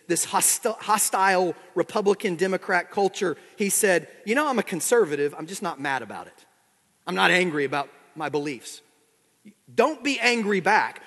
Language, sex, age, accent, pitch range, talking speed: English, male, 40-59, American, 170-230 Hz, 145 wpm